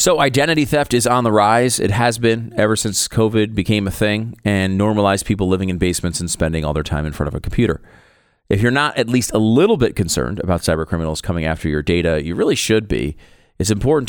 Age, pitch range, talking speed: 40-59, 85-110 Hz, 230 wpm